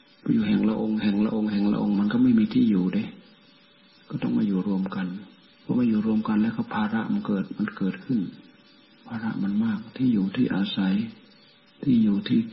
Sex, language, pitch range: male, Thai, 185-230 Hz